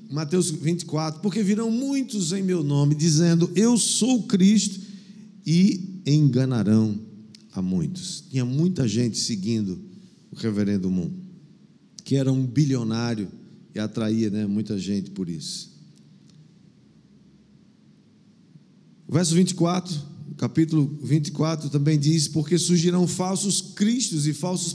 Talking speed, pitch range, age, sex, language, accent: 115 wpm, 150-195 Hz, 50-69, male, Portuguese, Brazilian